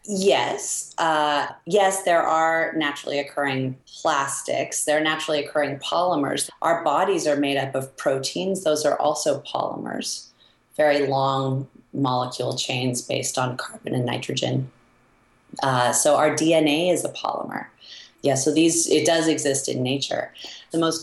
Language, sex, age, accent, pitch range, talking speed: English, female, 30-49, American, 135-165 Hz, 145 wpm